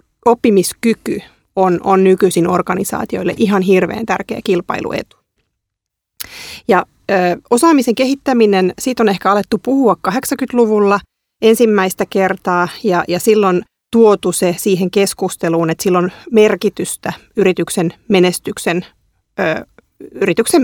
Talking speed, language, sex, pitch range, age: 100 wpm, Finnish, female, 180-215 Hz, 30-49